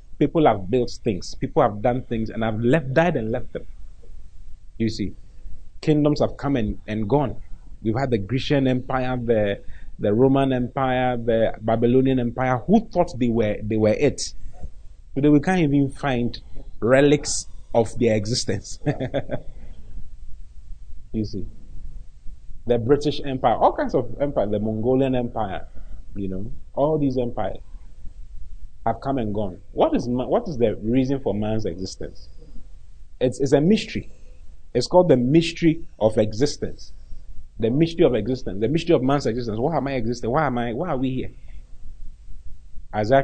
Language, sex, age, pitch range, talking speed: English, male, 30-49, 95-135 Hz, 155 wpm